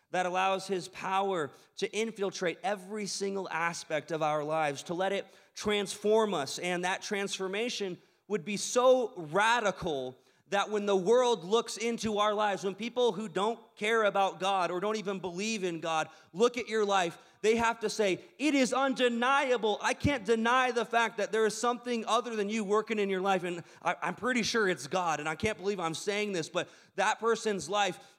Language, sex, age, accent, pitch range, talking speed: English, male, 30-49, American, 185-230 Hz, 190 wpm